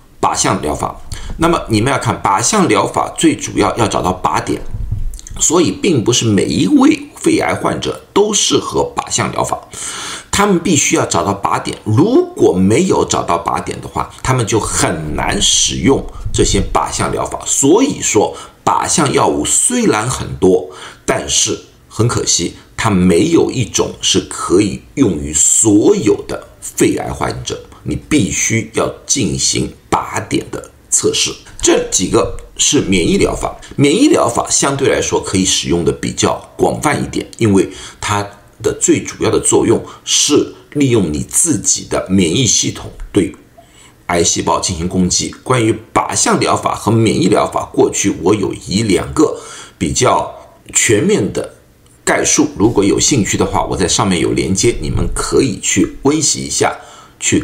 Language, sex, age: Chinese, male, 50-69